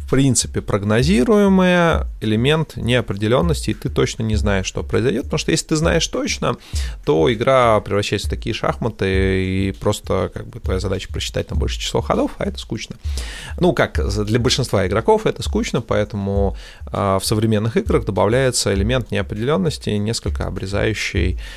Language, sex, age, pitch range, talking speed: Russian, male, 20-39, 95-115 Hz, 150 wpm